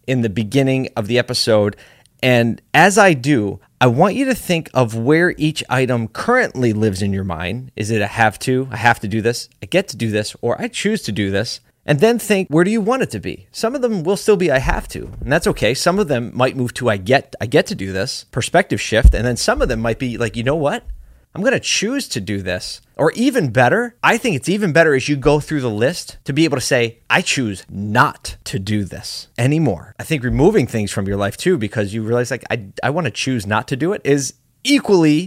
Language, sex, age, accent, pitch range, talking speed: English, male, 30-49, American, 115-165 Hz, 250 wpm